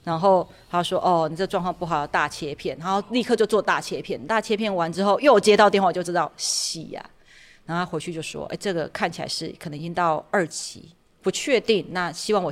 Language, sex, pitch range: Chinese, female, 165-210 Hz